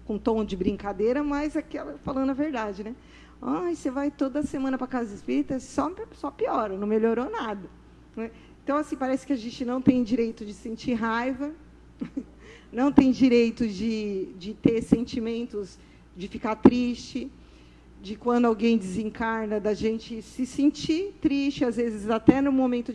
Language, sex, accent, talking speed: Portuguese, female, Brazilian, 160 wpm